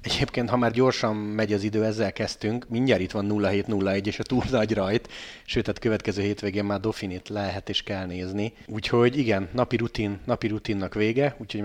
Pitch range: 105-120 Hz